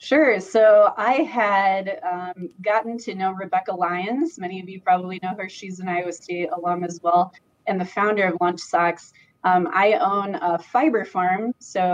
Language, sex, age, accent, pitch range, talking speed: English, female, 20-39, American, 175-200 Hz, 180 wpm